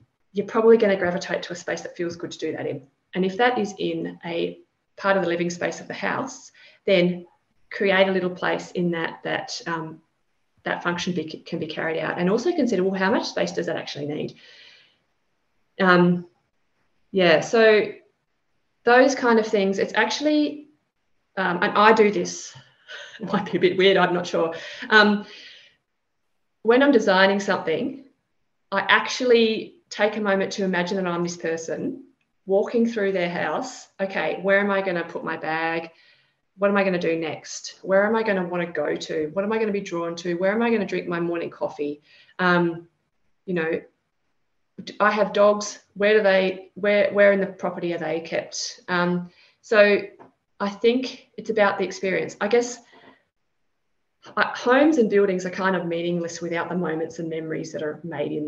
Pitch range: 170-210 Hz